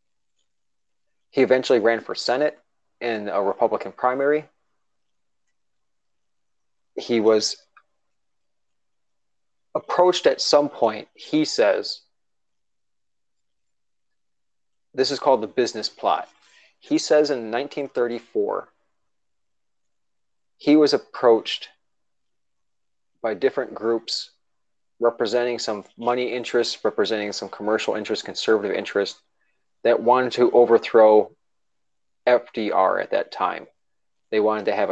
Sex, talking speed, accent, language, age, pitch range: male, 95 wpm, American, English, 30-49, 105-130 Hz